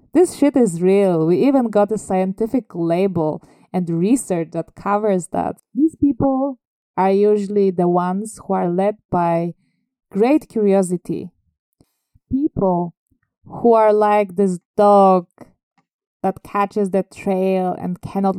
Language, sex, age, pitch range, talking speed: English, female, 20-39, 180-220 Hz, 125 wpm